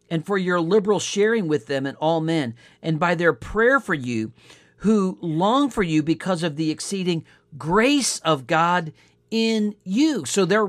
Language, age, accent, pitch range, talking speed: English, 50-69, American, 140-205 Hz, 175 wpm